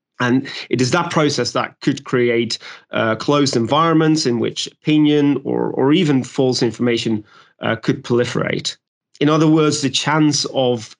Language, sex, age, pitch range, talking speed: English, male, 30-49, 120-155 Hz, 155 wpm